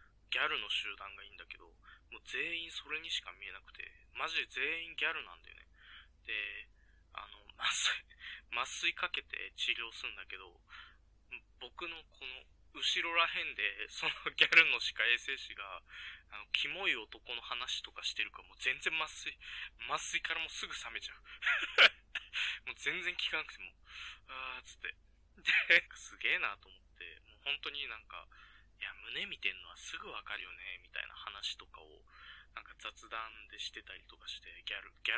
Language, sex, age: Japanese, male, 20-39